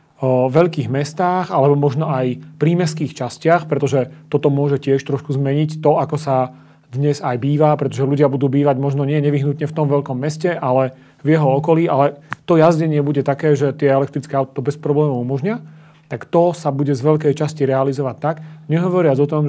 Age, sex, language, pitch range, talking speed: 40-59, male, Slovak, 140-160 Hz, 180 wpm